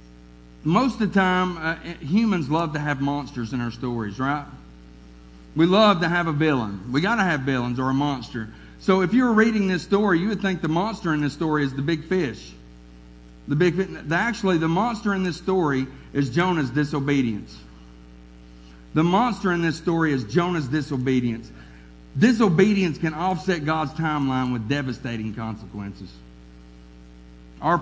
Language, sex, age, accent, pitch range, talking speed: English, male, 50-69, American, 110-165 Hz, 155 wpm